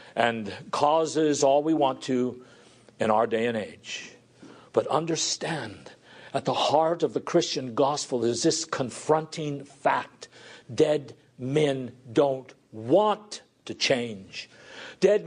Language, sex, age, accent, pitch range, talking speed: English, male, 60-79, American, 150-220 Hz, 120 wpm